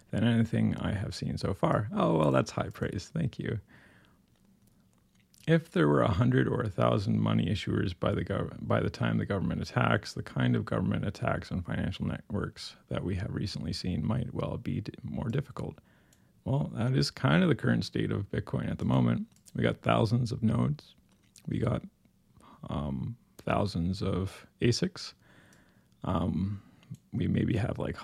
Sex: male